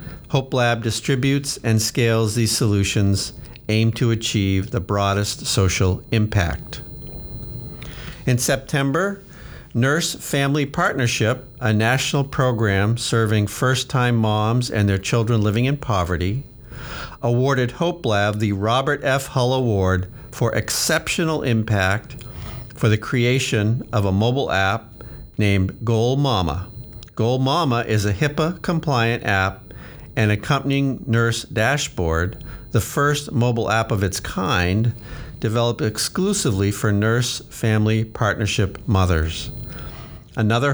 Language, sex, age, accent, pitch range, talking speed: English, male, 50-69, American, 105-130 Hz, 110 wpm